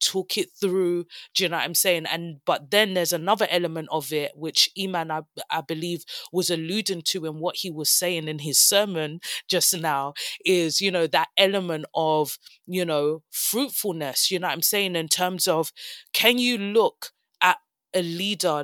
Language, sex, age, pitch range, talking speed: English, female, 20-39, 160-195 Hz, 185 wpm